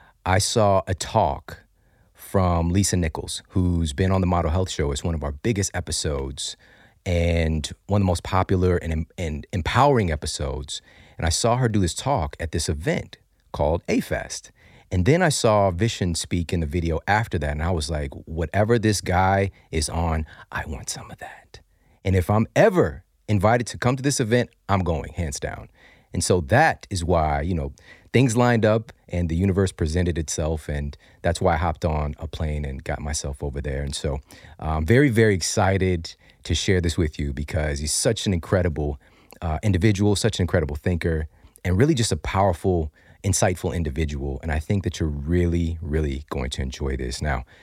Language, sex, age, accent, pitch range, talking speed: English, male, 40-59, American, 80-100 Hz, 190 wpm